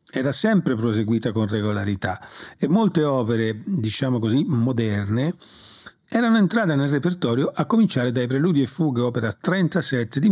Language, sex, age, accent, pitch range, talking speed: Italian, male, 40-59, native, 115-165 Hz, 140 wpm